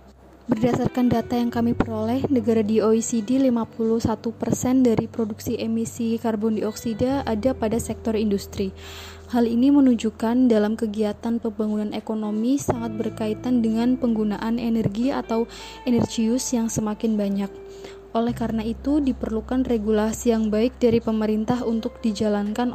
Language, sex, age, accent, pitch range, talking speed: Indonesian, female, 20-39, native, 215-245 Hz, 120 wpm